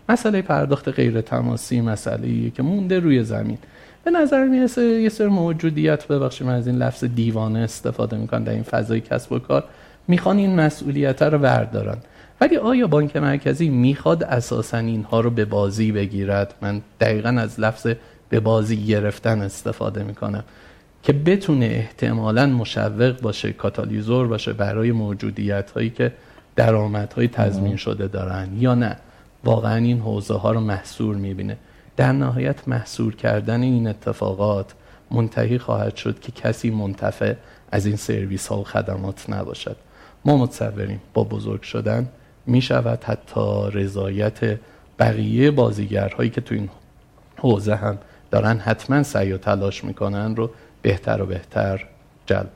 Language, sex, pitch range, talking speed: Persian, male, 105-125 Hz, 145 wpm